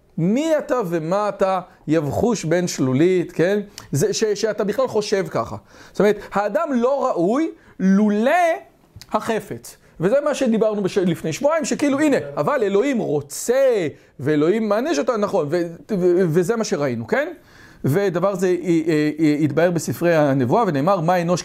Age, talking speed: 40-59, 140 wpm